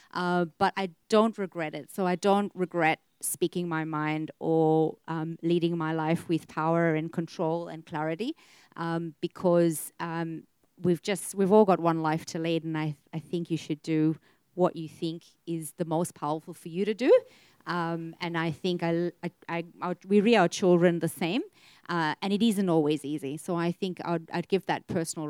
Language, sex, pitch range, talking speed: English, female, 155-175 Hz, 195 wpm